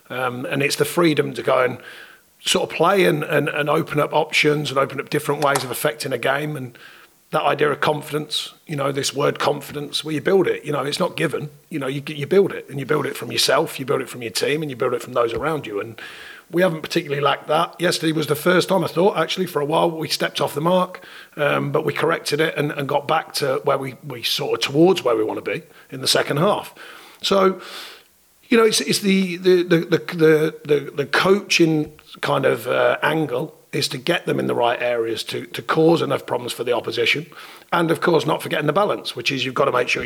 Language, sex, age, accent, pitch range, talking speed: English, male, 40-59, British, 145-175 Hz, 245 wpm